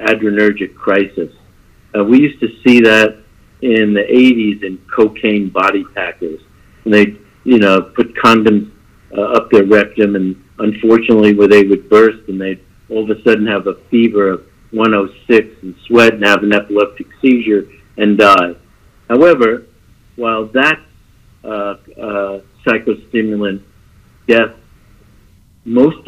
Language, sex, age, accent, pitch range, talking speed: English, male, 60-79, American, 100-115 Hz, 140 wpm